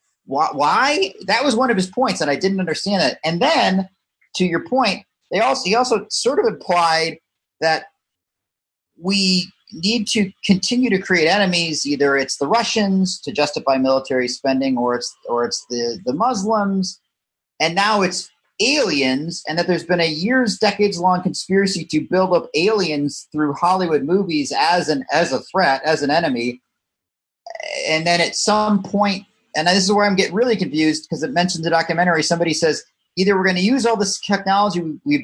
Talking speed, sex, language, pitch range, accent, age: 175 wpm, male, English, 150-200 Hz, American, 40-59